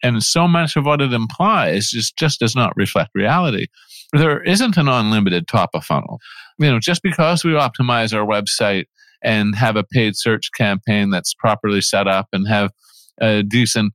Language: English